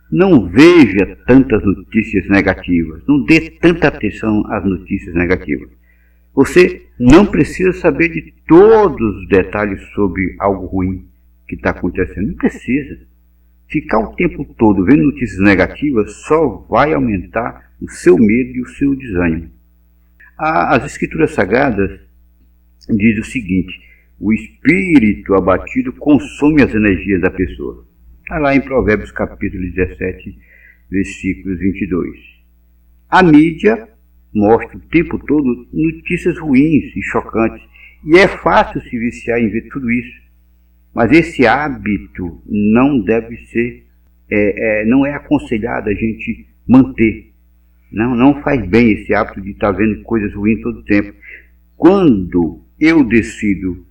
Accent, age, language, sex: Brazilian, 60-79, Portuguese, male